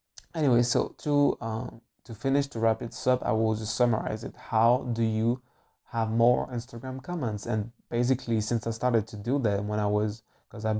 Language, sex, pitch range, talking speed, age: English, male, 110-125 Hz, 180 wpm, 20-39